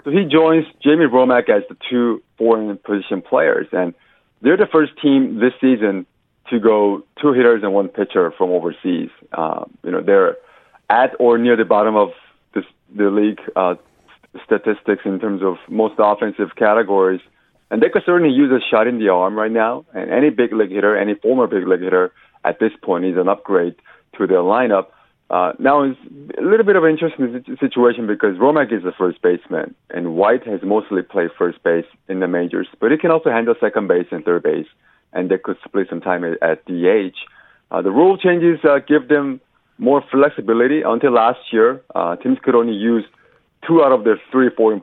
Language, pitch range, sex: Korean, 100-150 Hz, male